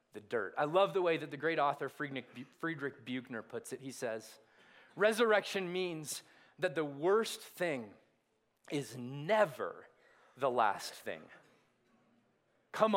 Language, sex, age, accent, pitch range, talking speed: English, male, 30-49, American, 165-225 Hz, 130 wpm